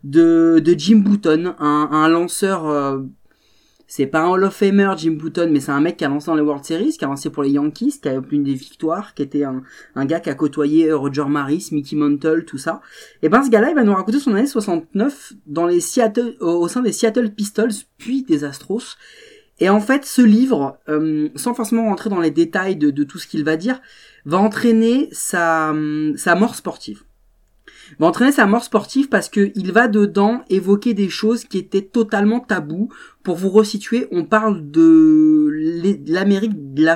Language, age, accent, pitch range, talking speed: French, 30-49, French, 155-225 Hz, 205 wpm